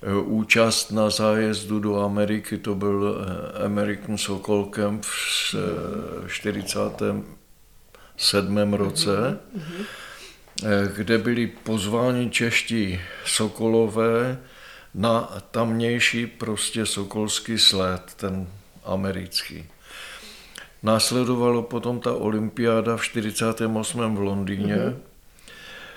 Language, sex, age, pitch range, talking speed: Czech, male, 60-79, 100-115 Hz, 75 wpm